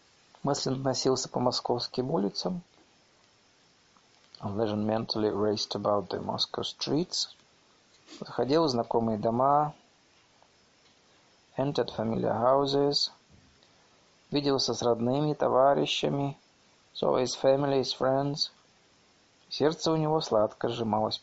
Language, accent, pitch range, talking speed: Russian, native, 115-150 Hz, 90 wpm